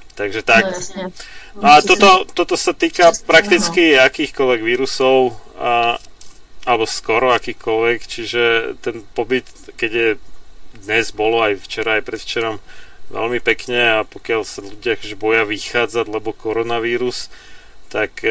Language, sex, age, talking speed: Slovak, male, 30-49, 120 wpm